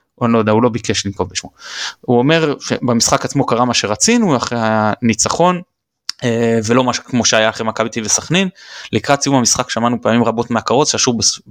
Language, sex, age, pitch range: Hebrew, male, 20-39, 110-135 Hz